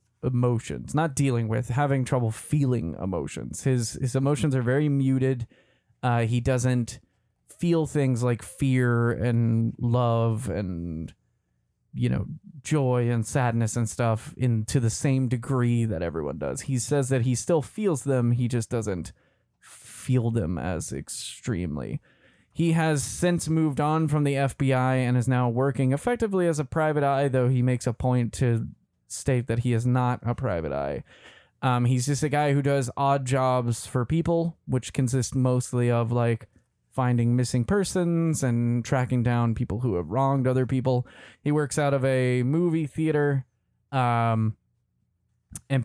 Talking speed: 160 wpm